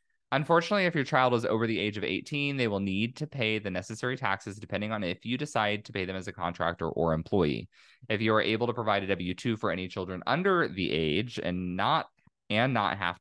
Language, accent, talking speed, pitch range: English, American, 225 wpm, 90-125 Hz